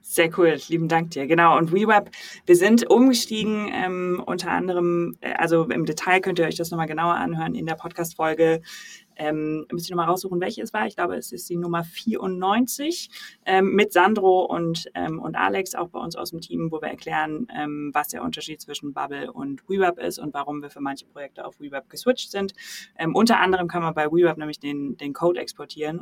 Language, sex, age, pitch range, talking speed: German, female, 20-39, 150-195 Hz, 210 wpm